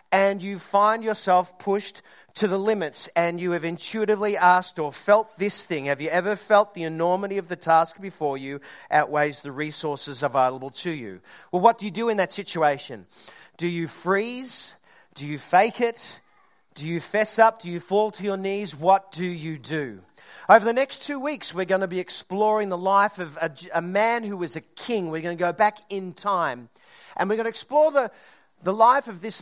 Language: English